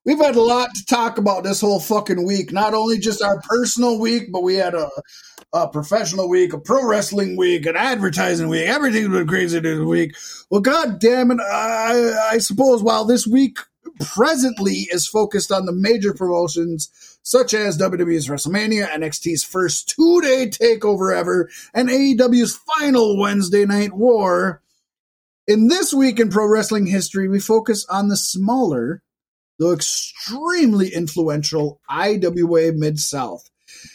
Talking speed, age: 150 wpm, 30-49